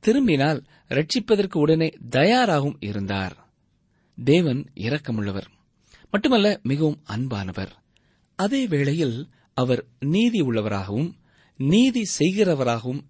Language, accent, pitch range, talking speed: Tamil, native, 115-175 Hz, 70 wpm